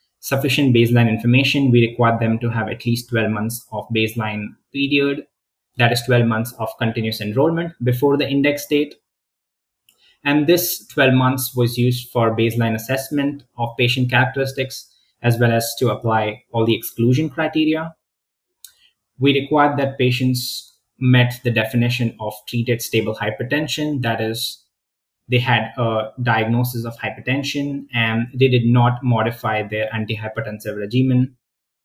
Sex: male